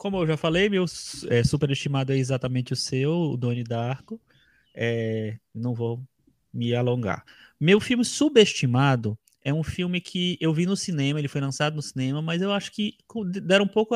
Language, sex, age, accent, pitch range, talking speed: Portuguese, male, 20-39, Brazilian, 135-180 Hz, 175 wpm